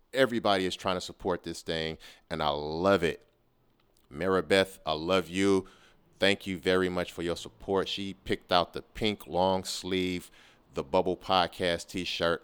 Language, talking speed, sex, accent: English, 160 wpm, male, American